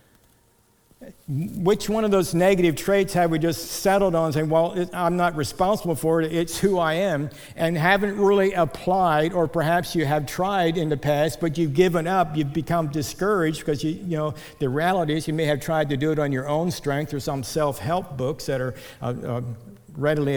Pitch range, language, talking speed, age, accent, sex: 125-155 Hz, English, 200 wpm, 60-79, American, male